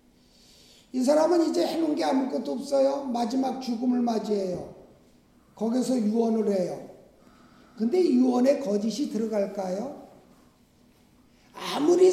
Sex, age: male, 50-69